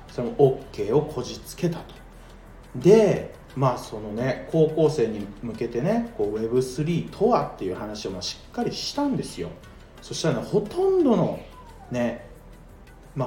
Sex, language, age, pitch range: male, Japanese, 40-59, 120-165 Hz